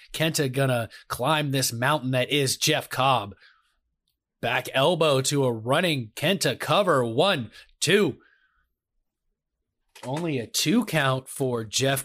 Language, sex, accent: English, male, American